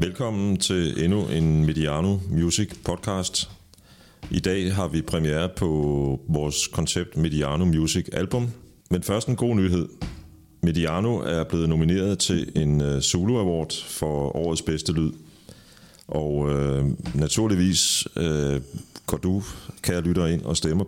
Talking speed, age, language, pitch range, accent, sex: 130 wpm, 40-59, Danish, 75-95 Hz, native, male